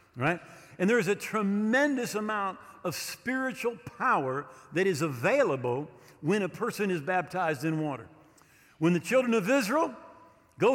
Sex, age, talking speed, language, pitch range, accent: male, 50-69, 145 wpm, English, 175-230 Hz, American